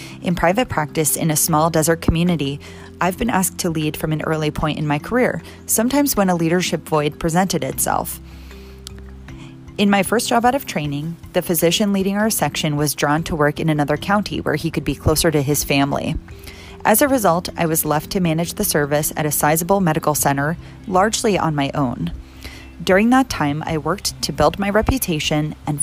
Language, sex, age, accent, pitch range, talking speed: English, female, 30-49, American, 140-185 Hz, 195 wpm